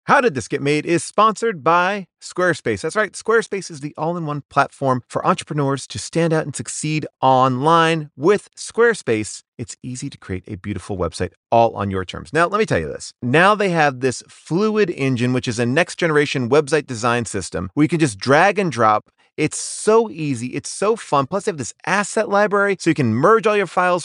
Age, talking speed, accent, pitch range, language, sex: 30-49, 205 wpm, American, 120-170 Hz, English, male